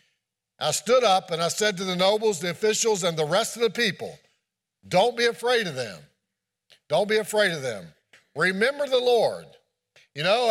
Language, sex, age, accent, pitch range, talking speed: English, male, 60-79, American, 180-235 Hz, 185 wpm